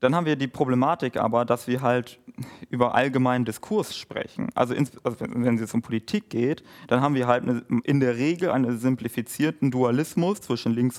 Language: German